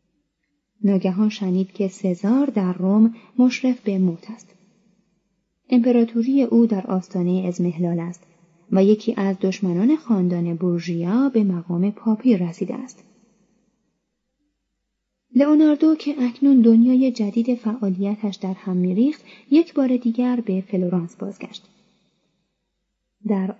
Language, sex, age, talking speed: Persian, female, 30-49, 110 wpm